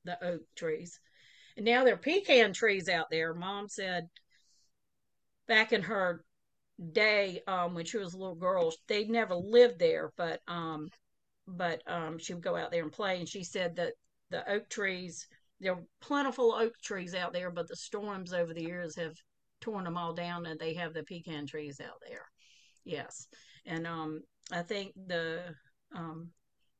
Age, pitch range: 40-59, 165-205 Hz